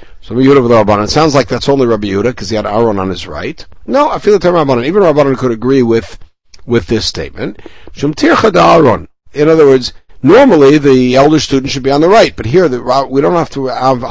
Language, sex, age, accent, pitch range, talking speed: English, male, 60-79, American, 115-175 Hz, 215 wpm